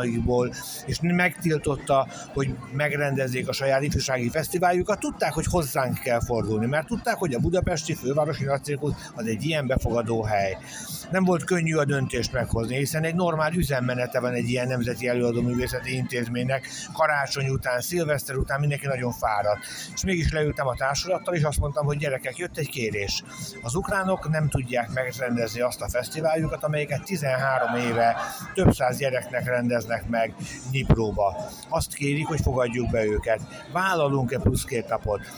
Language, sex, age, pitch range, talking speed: Hungarian, male, 60-79, 120-150 Hz, 150 wpm